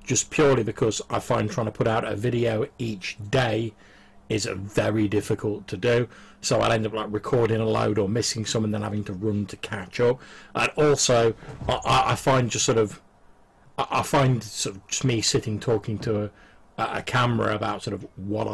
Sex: male